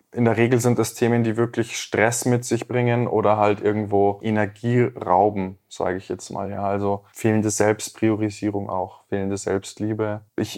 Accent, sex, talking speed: German, male, 160 wpm